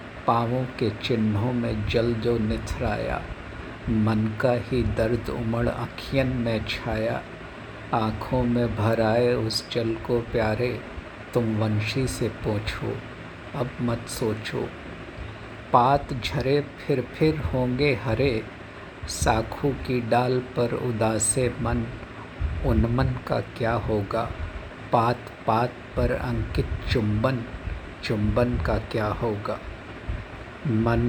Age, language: 60-79, Hindi